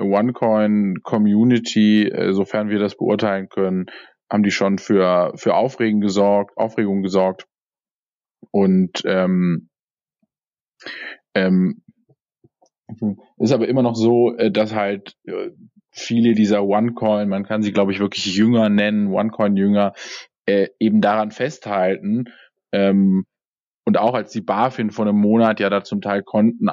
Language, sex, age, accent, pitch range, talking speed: German, male, 20-39, German, 100-115 Hz, 130 wpm